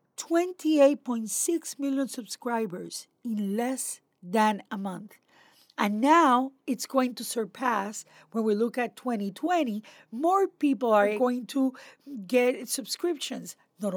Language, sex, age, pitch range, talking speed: English, female, 50-69, 200-270 Hz, 110 wpm